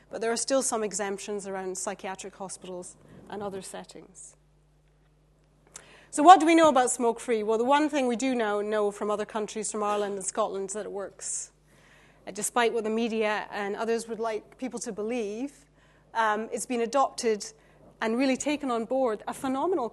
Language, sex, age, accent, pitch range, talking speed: English, female, 30-49, British, 205-245 Hz, 180 wpm